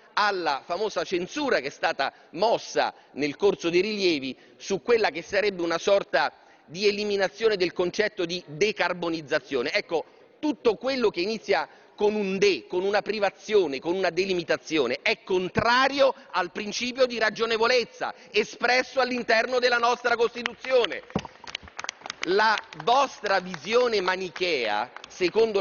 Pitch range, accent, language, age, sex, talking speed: 170-240 Hz, native, Italian, 40-59, male, 125 wpm